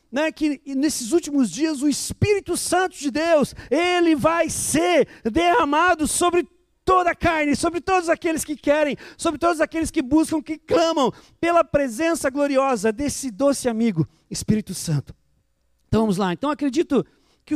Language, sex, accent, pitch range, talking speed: Portuguese, male, Brazilian, 235-300 Hz, 150 wpm